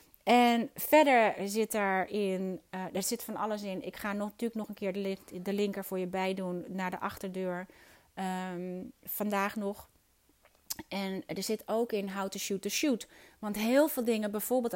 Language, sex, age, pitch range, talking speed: Dutch, female, 30-49, 185-235 Hz, 165 wpm